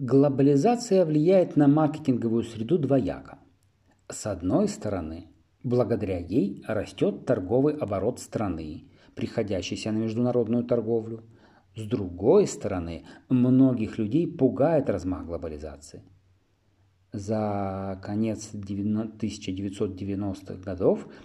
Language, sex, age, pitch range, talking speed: Russian, male, 40-59, 95-125 Hz, 90 wpm